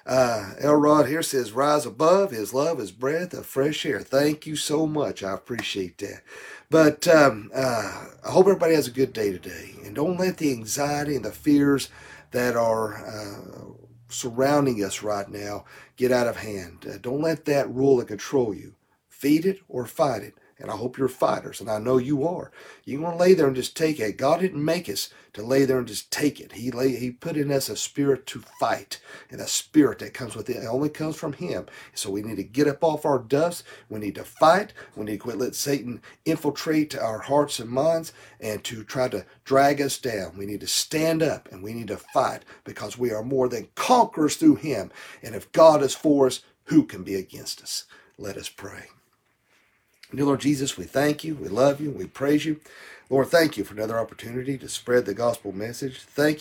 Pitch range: 110-150 Hz